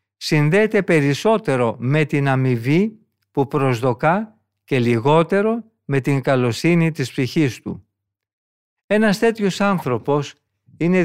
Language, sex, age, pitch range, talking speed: Greek, male, 50-69, 115-165 Hz, 105 wpm